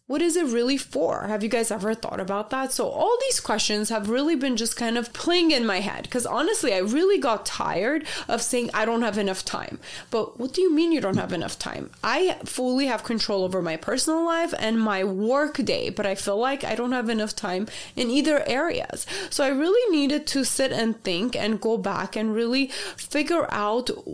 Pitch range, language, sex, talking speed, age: 210-290 Hz, English, female, 220 wpm, 20-39